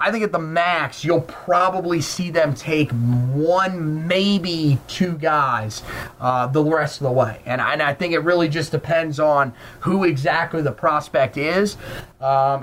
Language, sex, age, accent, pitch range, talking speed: English, male, 30-49, American, 135-160 Hz, 165 wpm